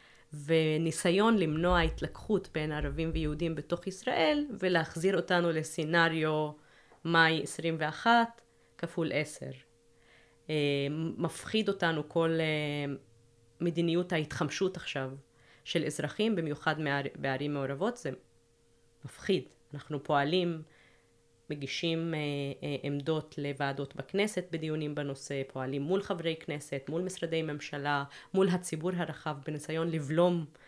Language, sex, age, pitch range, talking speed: Hebrew, female, 30-49, 145-165 Hz, 95 wpm